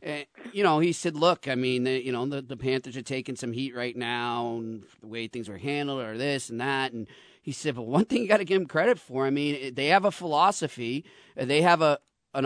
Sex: male